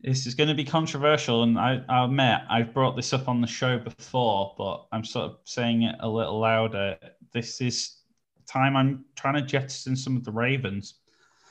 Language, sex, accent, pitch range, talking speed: English, male, British, 110-130 Hz, 200 wpm